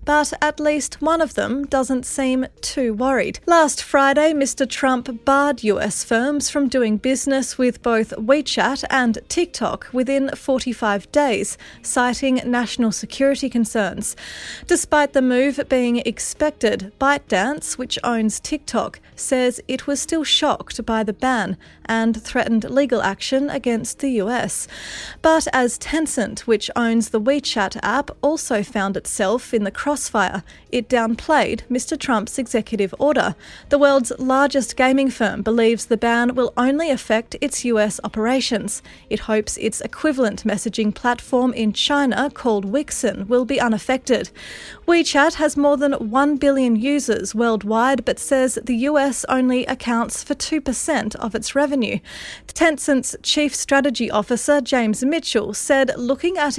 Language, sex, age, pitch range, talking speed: English, female, 30-49, 225-280 Hz, 140 wpm